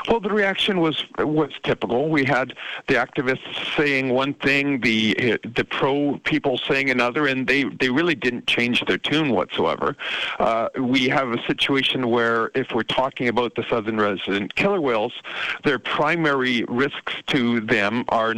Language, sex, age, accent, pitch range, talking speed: English, male, 50-69, American, 125-145 Hz, 165 wpm